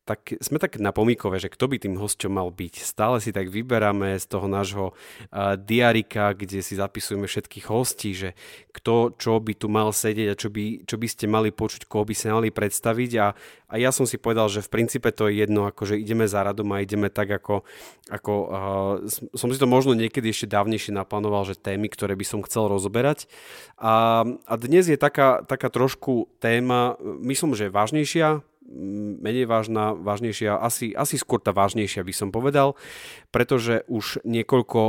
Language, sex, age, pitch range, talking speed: Slovak, male, 30-49, 100-115 Hz, 185 wpm